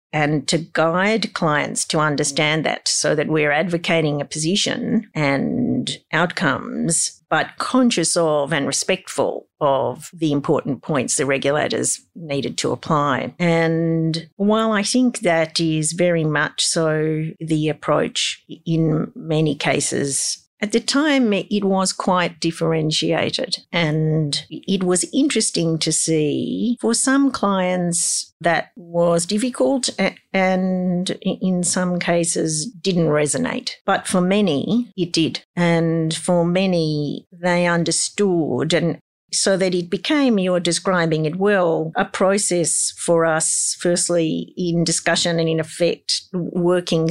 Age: 50-69